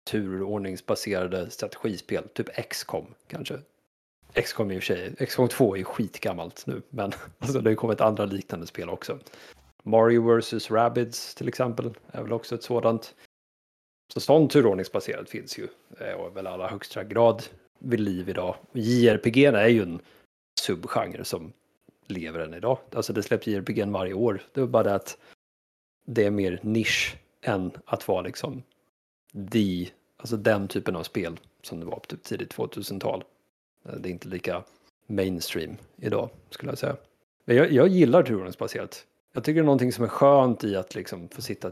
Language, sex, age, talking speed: Swedish, male, 30-49, 165 wpm